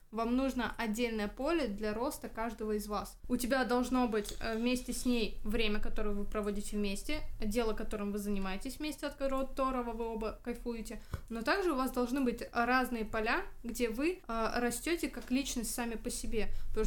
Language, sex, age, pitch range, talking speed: Russian, female, 20-39, 215-250 Hz, 170 wpm